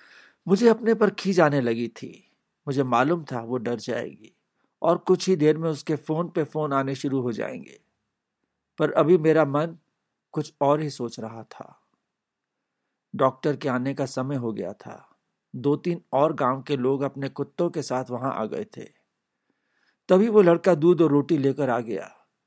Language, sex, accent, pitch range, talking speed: Hindi, male, native, 130-165 Hz, 175 wpm